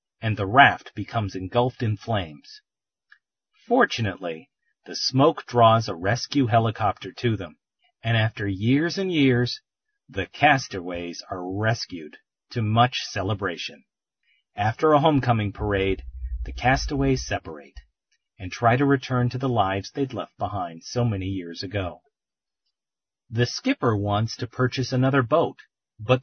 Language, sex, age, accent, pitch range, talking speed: English, male, 40-59, American, 100-135 Hz, 130 wpm